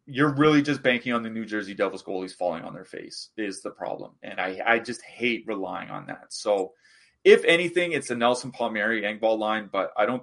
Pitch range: 105-120 Hz